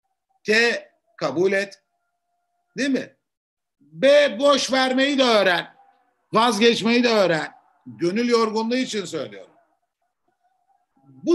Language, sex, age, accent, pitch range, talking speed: Turkish, male, 50-69, native, 180-280 Hz, 95 wpm